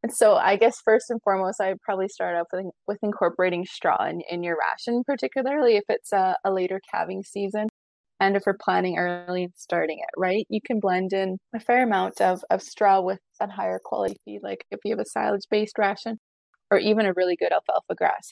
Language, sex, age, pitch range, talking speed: English, female, 20-39, 185-210 Hz, 215 wpm